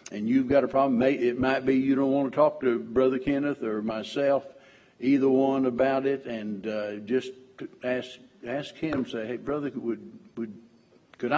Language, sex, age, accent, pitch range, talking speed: English, male, 60-79, American, 120-150 Hz, 180 wpm